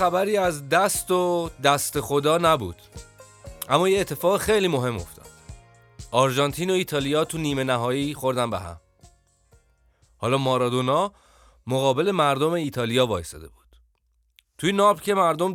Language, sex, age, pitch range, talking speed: Persian, male, 30-49, 95-145 Hz, 125 wpm